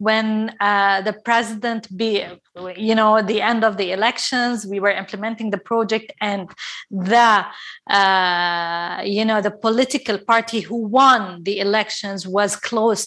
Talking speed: 140 wpm